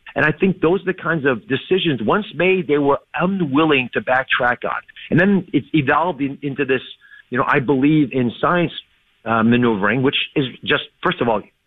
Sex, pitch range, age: male, 120-170 Hz, 50-69